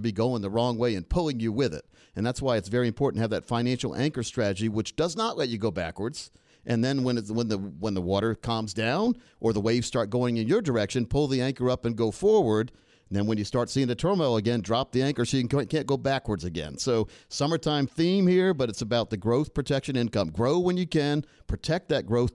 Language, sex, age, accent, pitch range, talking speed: English, male, 50-69, American, 110-140 Hz, 240 wpm